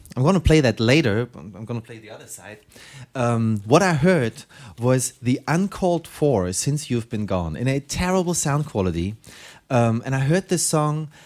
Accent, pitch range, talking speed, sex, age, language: German, 110-145 Hz, 190 wpm, male, 30-49, English